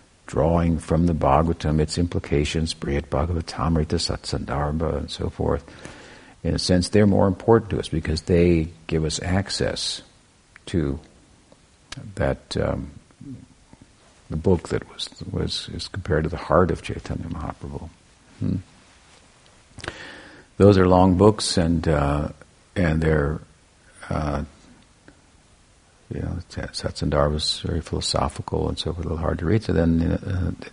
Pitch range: 75-90 Hz